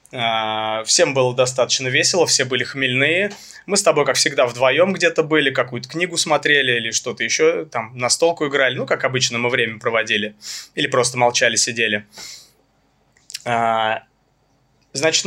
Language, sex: Russian, male